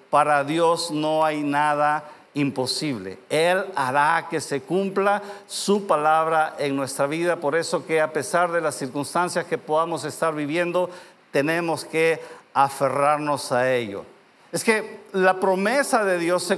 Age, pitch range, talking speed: 50-69, 160-205 Hz, 145 wpm